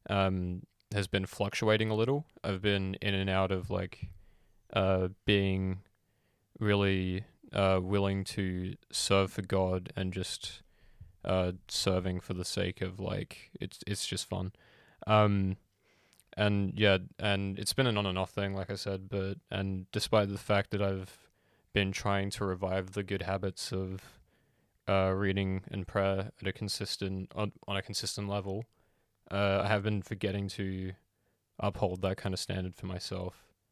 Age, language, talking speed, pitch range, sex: 20-39, English, 160 wpm, 95-100 Hz, male